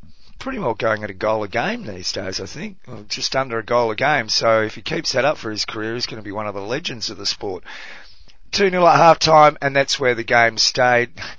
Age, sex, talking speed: 30-49, male, 260 wpm